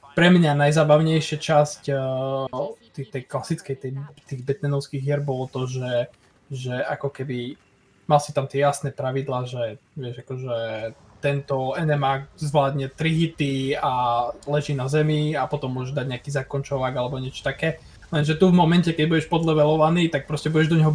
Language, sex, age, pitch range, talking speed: Slovak, male, 20-39, 135-165 Hz, 160 wpm